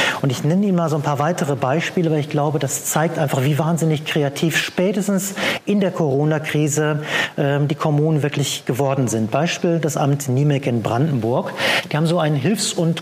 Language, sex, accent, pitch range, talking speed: German, male, German, 140-175 Hz, 190 wpm